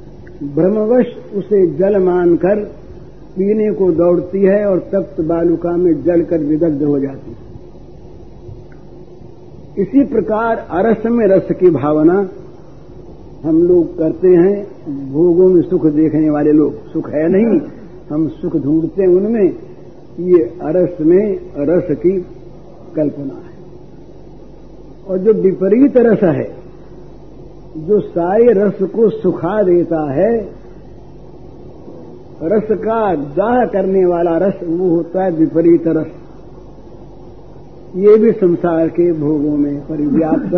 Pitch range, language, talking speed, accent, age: 160-195 Hz, Hindi, 115 wpm, native, 60-79